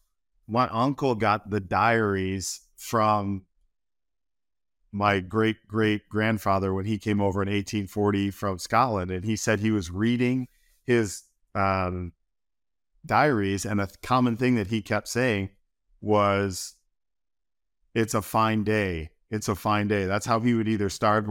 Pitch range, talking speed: 100-125 Hz, 140 wpm